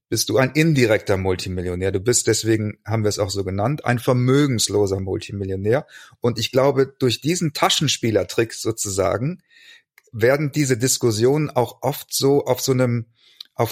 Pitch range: 115-140 Hz